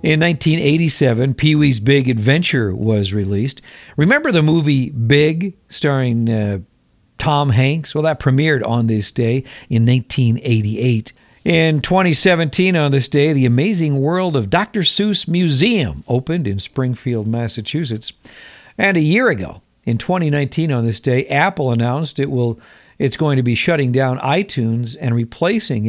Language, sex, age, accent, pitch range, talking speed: English, male, 50-69, American, 120-155 Hz, 140 wpm